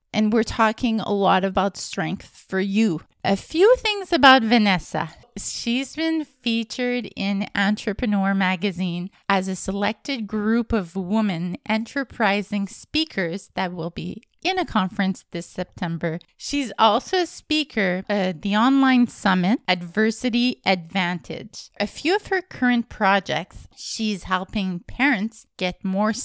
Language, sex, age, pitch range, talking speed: English, female, 20-39, 185-240 Hz, 130 wpm